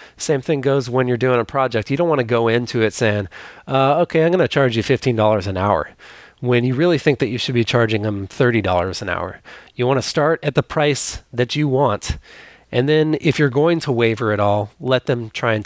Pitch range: 110-140 Hz